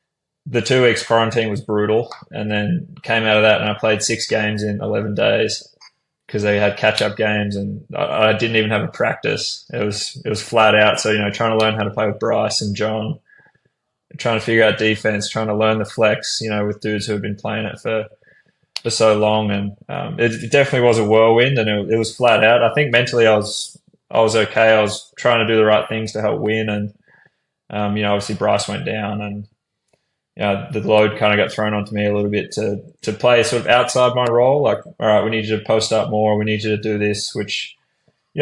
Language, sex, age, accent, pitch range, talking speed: English, male, 20-39, Australian, 105-115 Hz, 245 wpm